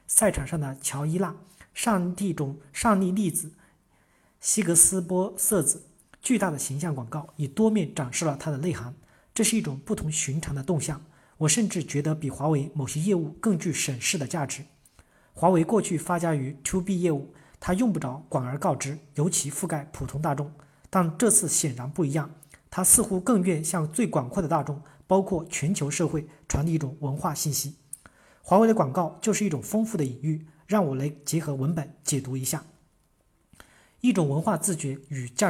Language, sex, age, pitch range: Chinese, male, 40-59, 145-185 Hz